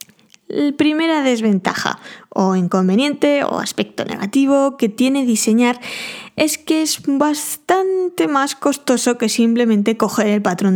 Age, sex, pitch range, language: 20-39, female, 200-245 Hz, Spanish